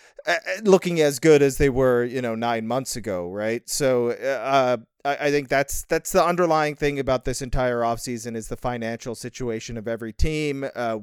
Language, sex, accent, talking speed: English, male, American, 185 wpm